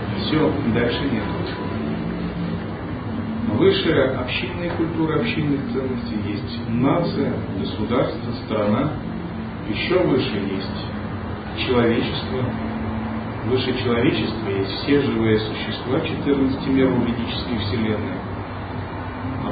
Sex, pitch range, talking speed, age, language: male, 100-130 Hz, 90 wpm, 40-59, Russian